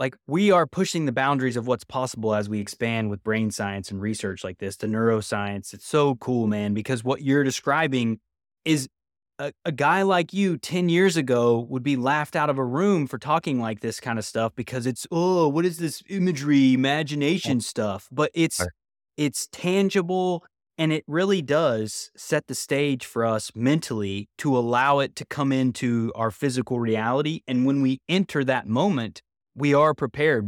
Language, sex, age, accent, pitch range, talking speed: English, male, 20-39, American, 120-160 Hz, 185 wpm